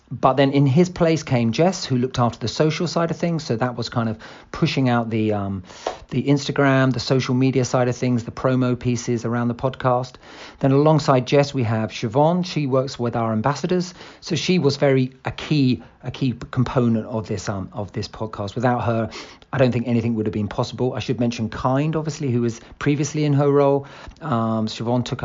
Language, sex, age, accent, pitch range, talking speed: English, male, 40-59, British, 115-140 Hz, 210 wpm